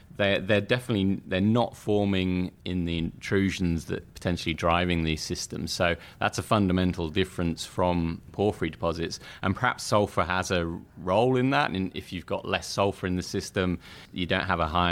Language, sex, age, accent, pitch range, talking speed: English, male, 30-49, British, 85-105 Hz, 180 wpm